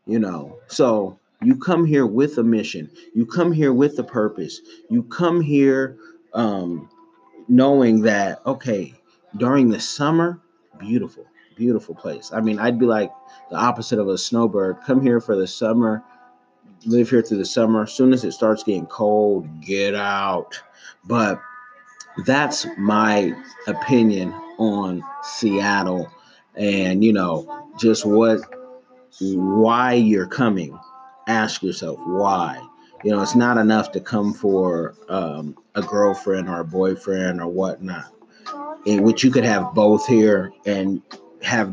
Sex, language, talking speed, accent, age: male, English, 140 wpm, American, 30-49